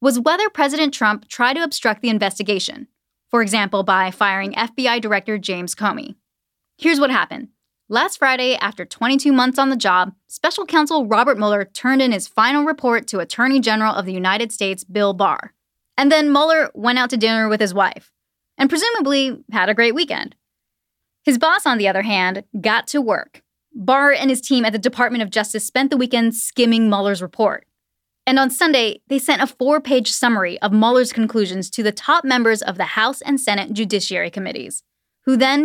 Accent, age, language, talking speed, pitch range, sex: American, 10-29, English, 185 wpm, 210-275 Hz, female